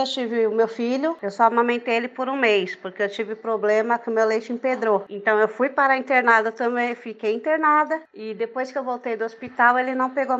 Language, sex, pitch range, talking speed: Portuguese, female, 220-270 Hz, 230 wpm